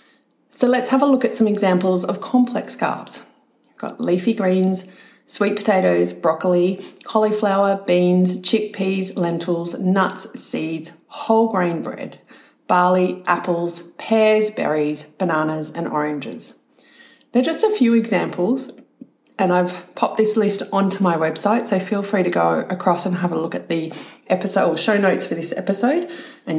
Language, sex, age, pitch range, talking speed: English, female, 30-49, 175-230 Hz, 150 wpm